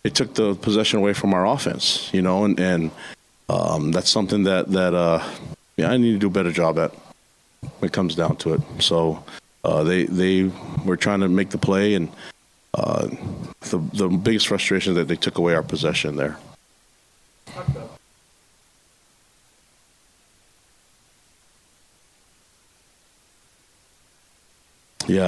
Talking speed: 140 wpm